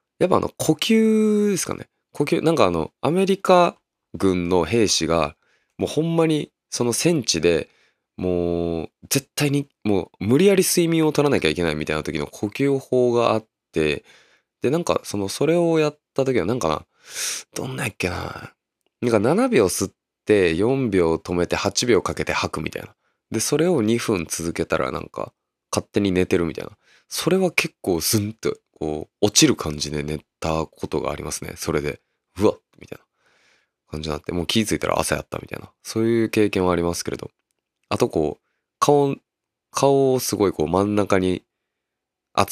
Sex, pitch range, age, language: male, 85-140 Hz, 20-39, Japanese